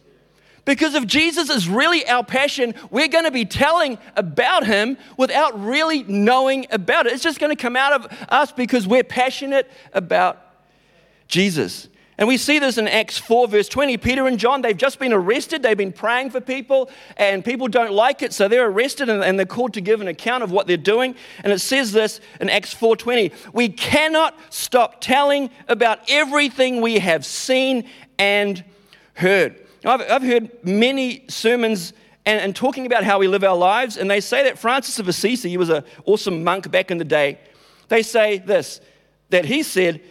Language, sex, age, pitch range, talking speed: English, male, 50-69, 200-265 Hz, 185 wpm